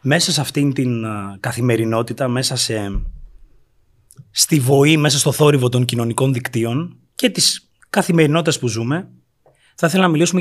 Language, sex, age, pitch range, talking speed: Greek, male, 30-49, 120-155 Hz, 140 wpm